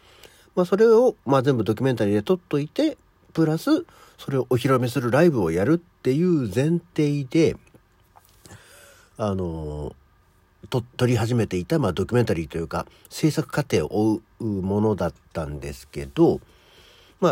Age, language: 50-69, Japanese